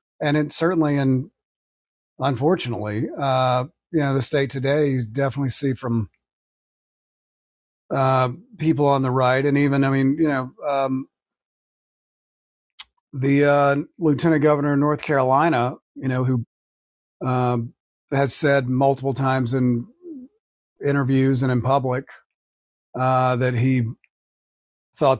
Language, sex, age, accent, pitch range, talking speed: English, male, 40-59, American, 125-150 Hz, 120 wpm